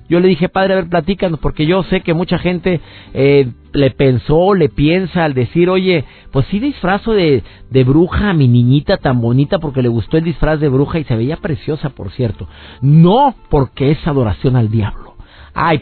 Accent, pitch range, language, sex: Mexican, 120-175 Hz, Spanish, male